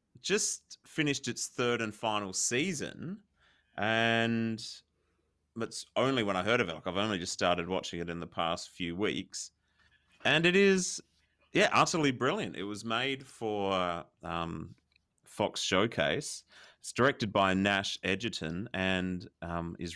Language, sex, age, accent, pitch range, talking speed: English, male, 30-49, Australian, 85-115 Hz, 145 wpm